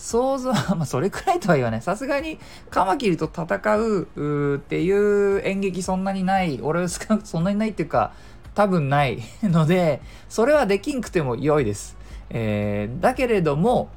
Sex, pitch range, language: male, 115-190 Hz, Japanese